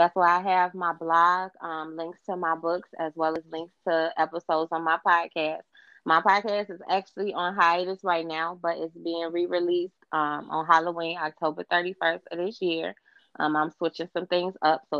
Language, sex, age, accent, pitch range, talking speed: English, female, 20-39, American, 155-180 Hz, 190 wpm